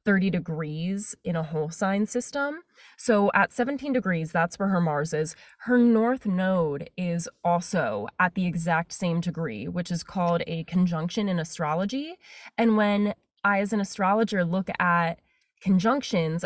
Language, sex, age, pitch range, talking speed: English, female, 20-39, 170-210 Hz, 155 wpm